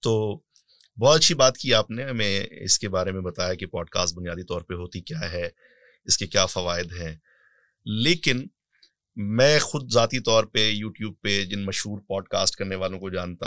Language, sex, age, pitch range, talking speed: Urdu, male, 30-49, 95-115 Hz, 185 wpm